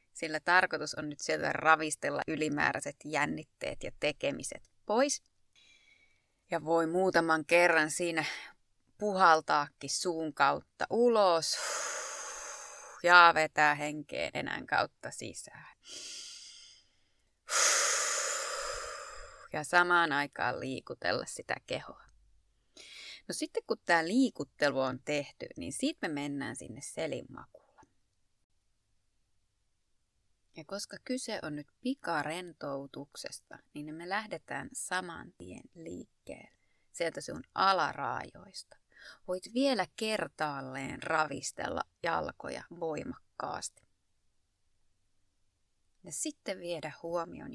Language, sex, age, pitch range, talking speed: Finnish, female, 20-39, 135-185 Hz, 90 wpm